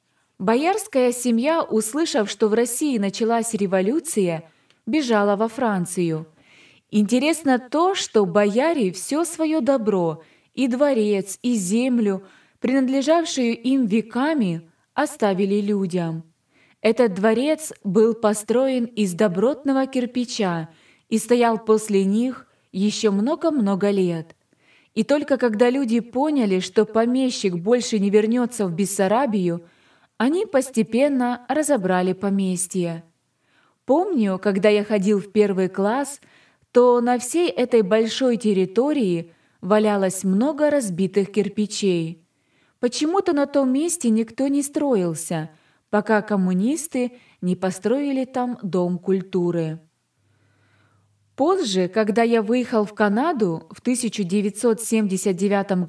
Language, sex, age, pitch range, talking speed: Russian, female, 20-39, 195-255 Hz, 105 wpm